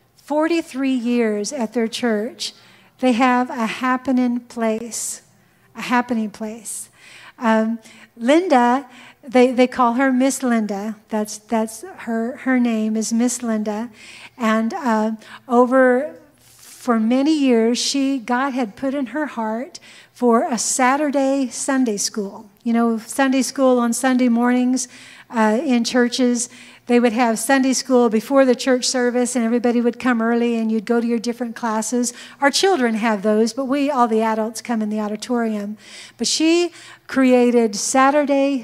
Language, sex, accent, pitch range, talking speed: English, female, American, 225-265 Hz, 150 wpm